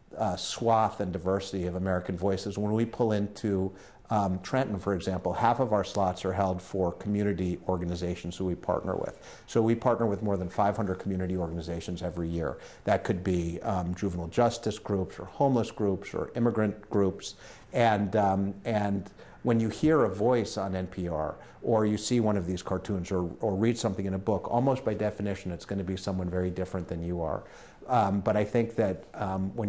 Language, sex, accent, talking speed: English, male, American, 195 wpm